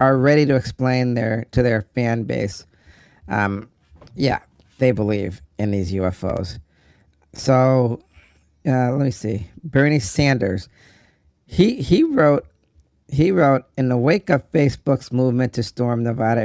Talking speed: 135 wpm